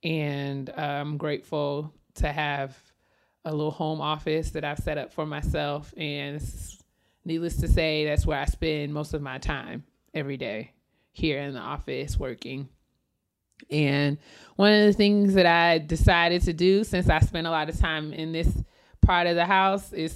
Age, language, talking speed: 30-49, English, 175 wpm